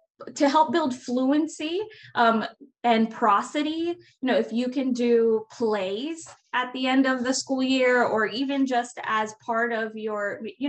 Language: English